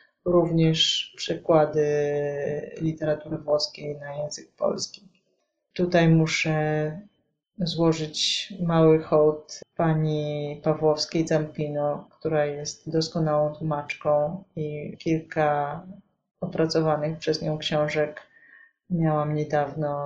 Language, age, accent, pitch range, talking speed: Polish, 30-49, native, 155-180 Hz, 80 wpm